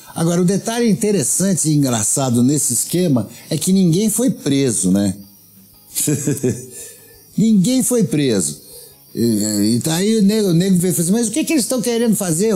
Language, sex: Portuguese, male